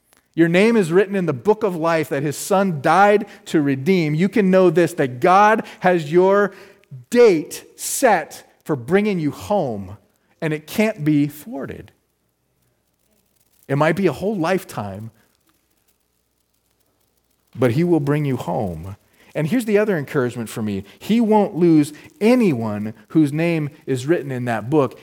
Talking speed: 155 wpm